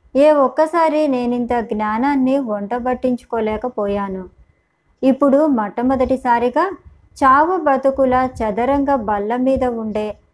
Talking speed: 80 wpm